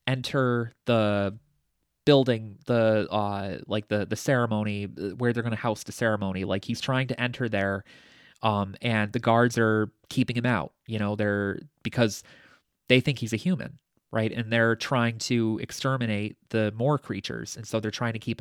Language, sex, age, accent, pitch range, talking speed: English, male, 20-39, American, 105-125 Hz, 175 wpm